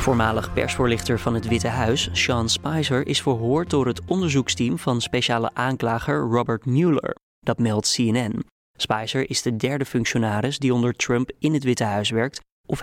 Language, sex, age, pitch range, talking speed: Dutch, male, 20-39, 115-135 Hz, 165 wpm